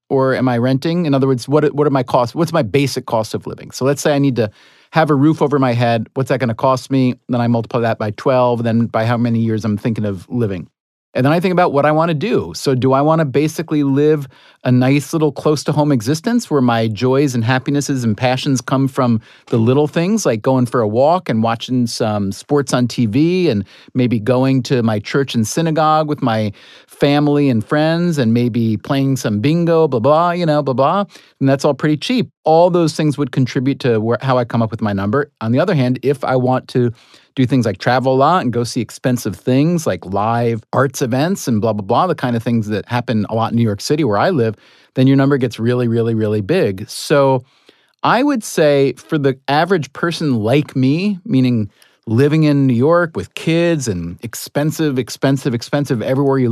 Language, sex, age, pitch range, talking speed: English, male, 40-59, 120-150 Hz, 225 wpm